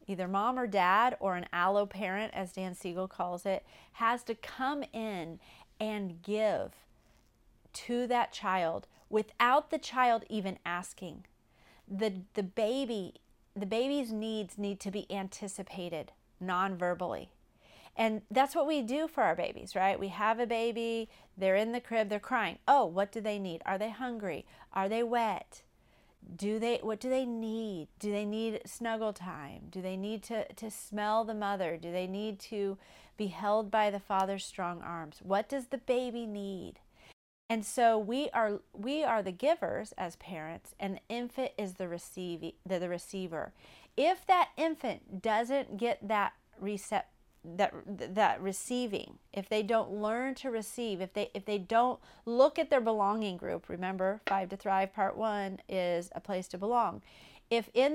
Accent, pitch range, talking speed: American, 190-235 Hz, 165 wpm